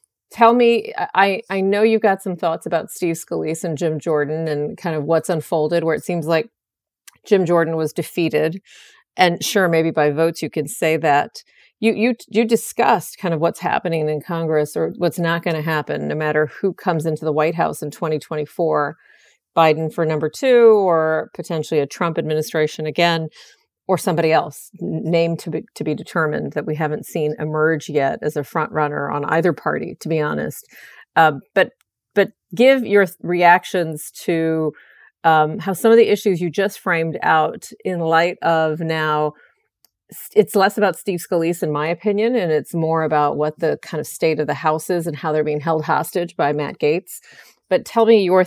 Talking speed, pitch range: 190 wpm, 155-185 Hz